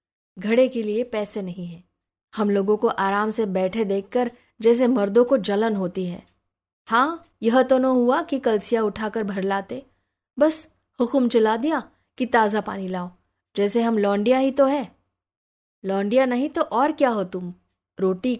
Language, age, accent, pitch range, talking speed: Hindi, 20-39, native, 200-255 Hz, 165 wpm